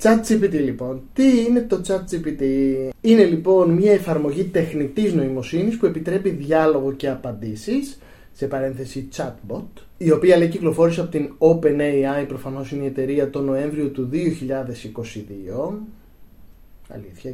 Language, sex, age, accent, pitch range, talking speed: Greek, male, 20-39, native, 130-185 Hz, 125 wpm